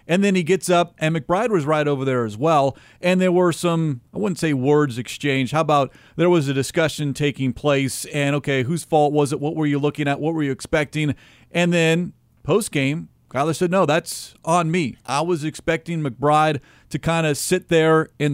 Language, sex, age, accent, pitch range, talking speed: English, male, 40-59, American, 135-165 Hz, 210 wpm